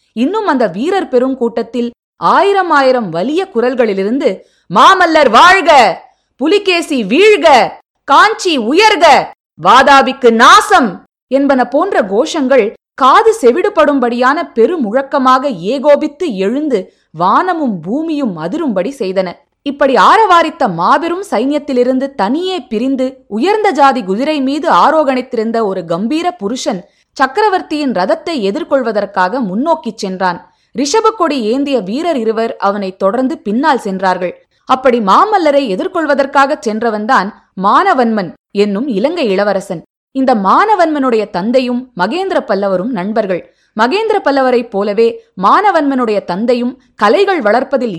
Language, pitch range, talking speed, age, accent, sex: Tamil, 220-310 Hz, 90 wpm, 20-39, native, female